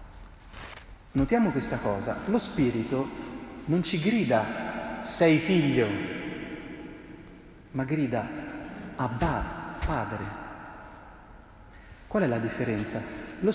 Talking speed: 85 wpm